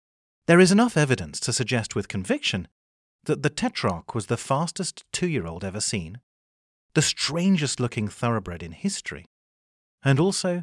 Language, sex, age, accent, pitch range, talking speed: English, male, 40-59, British, 105-170 Hz, 135 wpm